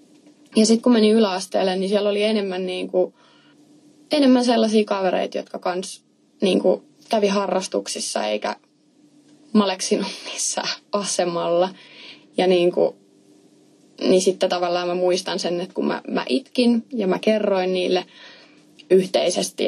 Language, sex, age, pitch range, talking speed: Finnish, female, 20-39, 180-240 Hz, 120 wpm